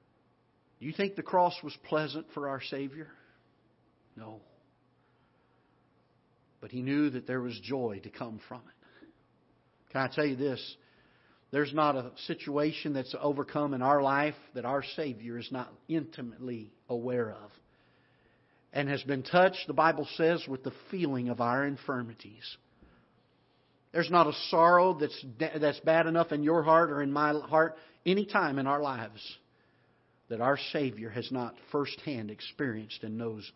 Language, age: English, 50-69